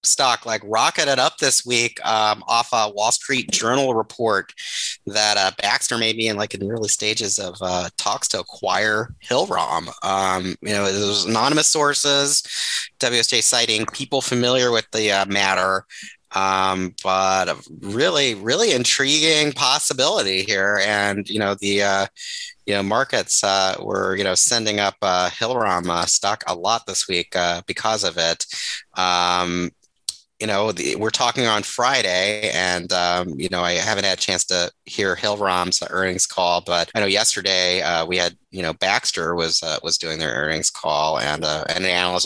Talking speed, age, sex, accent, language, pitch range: 170 wpm, 30-49, male, American, English, 85-105 Hz